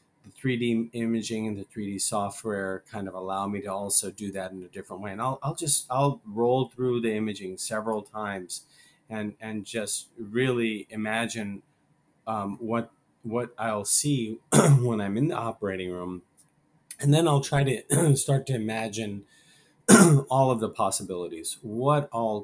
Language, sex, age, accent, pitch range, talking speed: English, male, 30-49, American, 95-115 Hz, 160 wpm